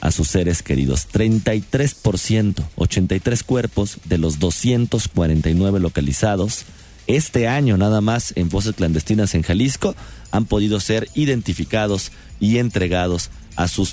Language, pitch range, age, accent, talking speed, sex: Spanish, 90-125 Hz, 40-59, Mexican, 115 wpm, male